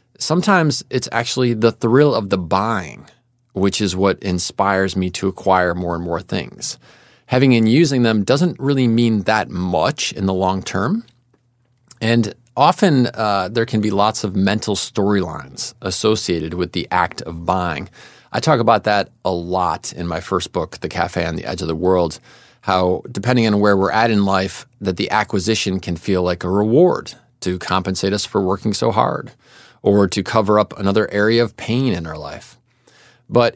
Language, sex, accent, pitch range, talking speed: English, male, American, 95-120 Hz, 180 wpm